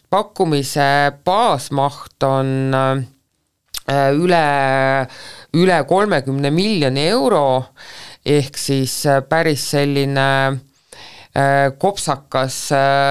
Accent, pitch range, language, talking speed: Finnish, 130-150 Hz, English, 60 wpm